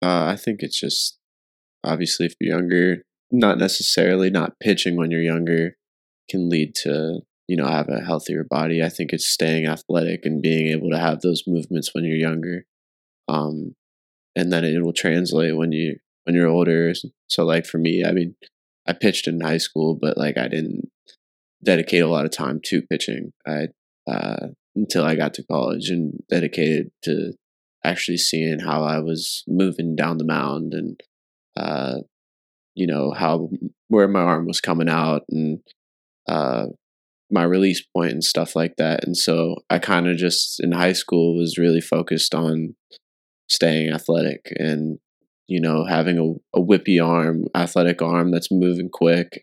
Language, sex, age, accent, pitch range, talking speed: English, male, 20-39, American, 80-90 Hz, 170 wpm